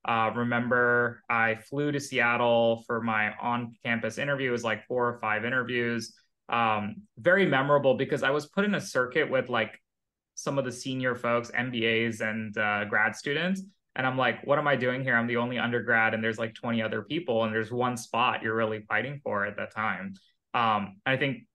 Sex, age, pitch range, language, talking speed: male, 20-39, 110-135 Hz, English, 195 wpm